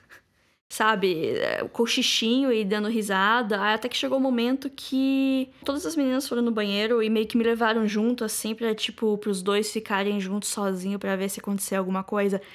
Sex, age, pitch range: female, 10-29, 200-265 Hz